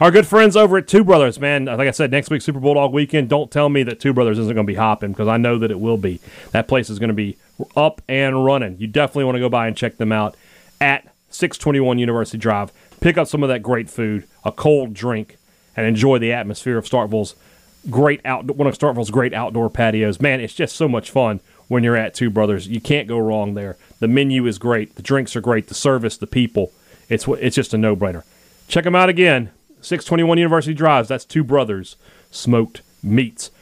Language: English